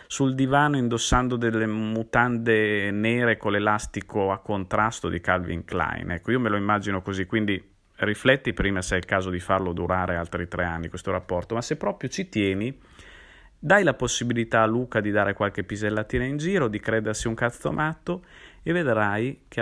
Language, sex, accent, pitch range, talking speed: Italian, male, native, 90-120 Hz, 175 wpm